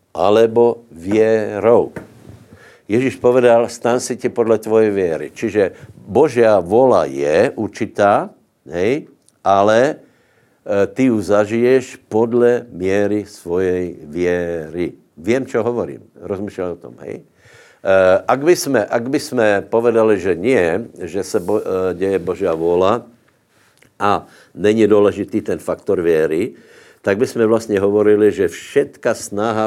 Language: Slovak